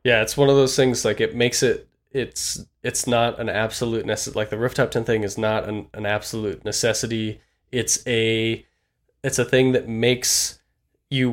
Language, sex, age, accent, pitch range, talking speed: English, male, 20-39, American, 105-125 Hz, 185 wpm